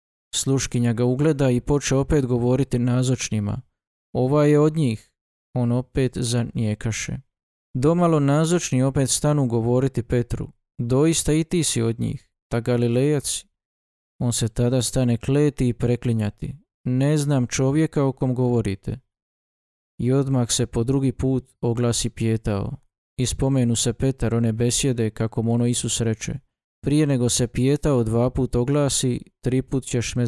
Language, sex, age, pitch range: Croatian, male, 20-39, 115-135 Hz